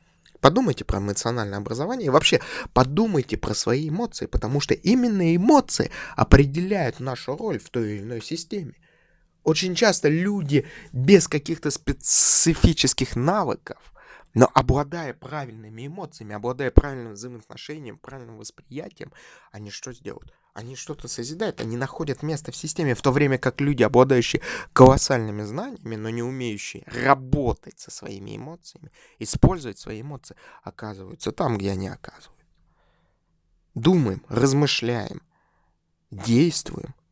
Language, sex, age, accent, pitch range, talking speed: Russian, male, 20-39, native, 110-150 Hz, 120 wpm